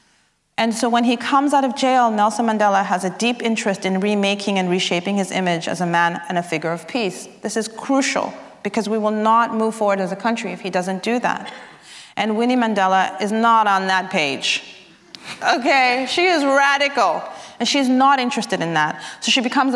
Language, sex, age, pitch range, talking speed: English, female, 30-49, 180-235 Hz, 200 wpm